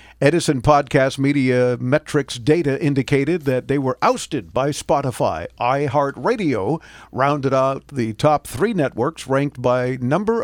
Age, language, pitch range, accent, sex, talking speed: 50-69, English, 125-150 Hz, American, male, 125 wpm